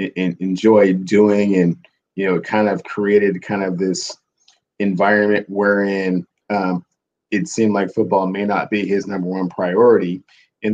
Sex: male